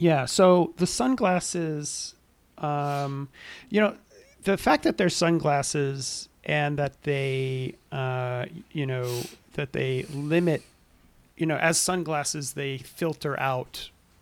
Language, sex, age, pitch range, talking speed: English, male, 40-59, 130-160 Hz, 120 wpm